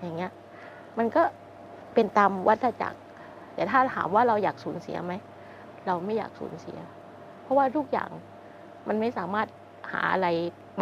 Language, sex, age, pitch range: Thai, female, 20-39, 160-205 Hz